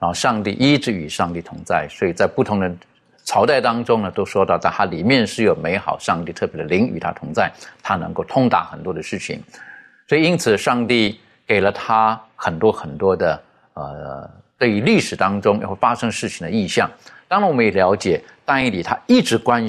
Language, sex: Chinese, male